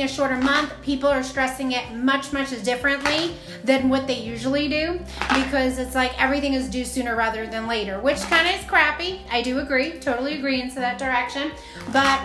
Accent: American